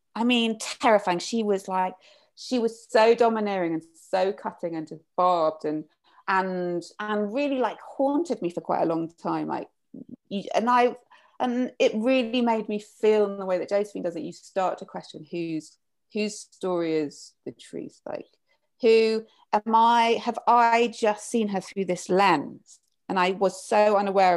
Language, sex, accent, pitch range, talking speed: English, female, British, 170-220 Hz, 170 wpm